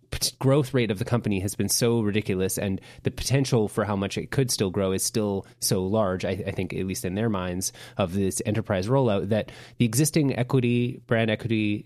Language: English